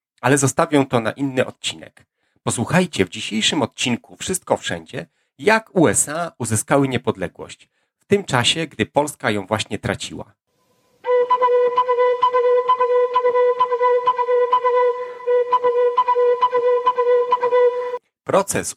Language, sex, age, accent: Polish, male, 40-59, native